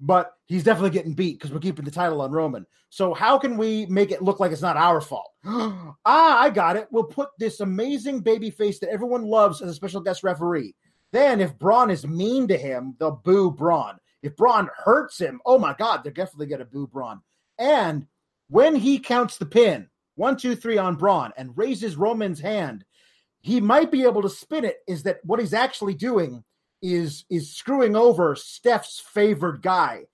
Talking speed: 195 wpm